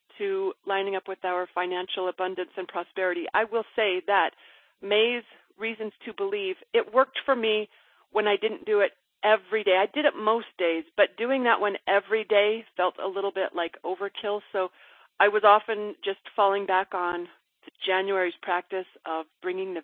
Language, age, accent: English, 40-59, American